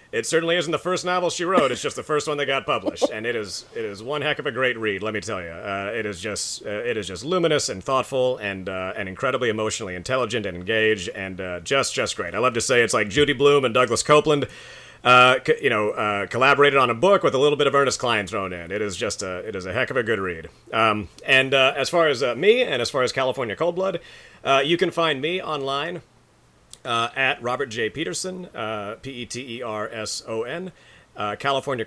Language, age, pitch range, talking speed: English, 30-49, 110-145 Hz, 235 wpm